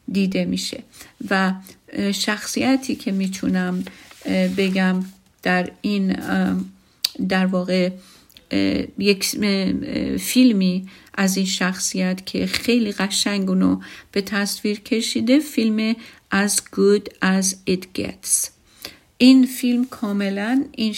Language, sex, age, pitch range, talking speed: Persian, female, 50-69, 185-250 Hz, 90 wpm